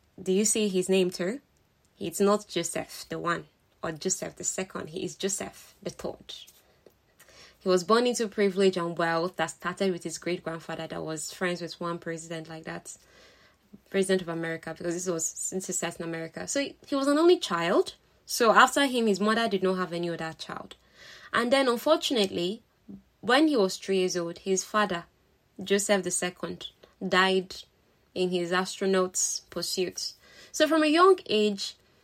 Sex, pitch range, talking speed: female, 175-210 Hz, 175 wpm